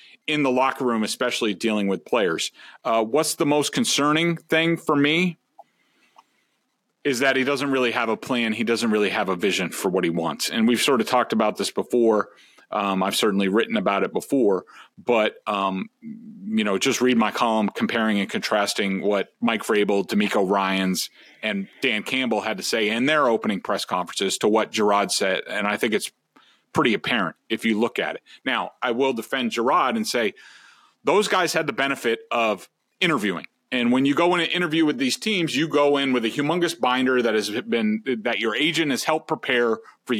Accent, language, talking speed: American, English, 195 wpm